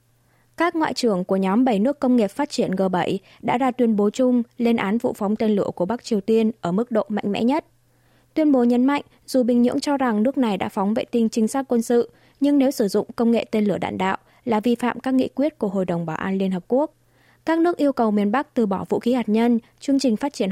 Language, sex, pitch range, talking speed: Vietnamese, female, 205-255 Hz, 270 wpm